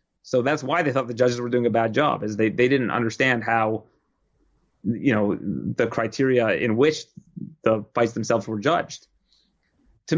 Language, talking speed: English, 175 wpm